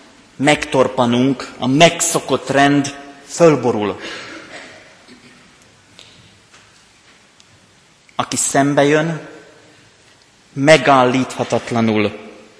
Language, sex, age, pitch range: Hungarian, male, 30-49, 135-175 Hz